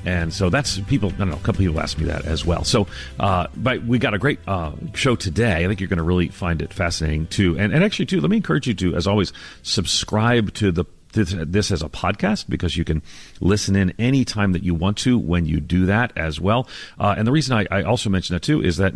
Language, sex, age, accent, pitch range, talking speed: English, male, 40-59, American, 85-110 Hz, 265 wpm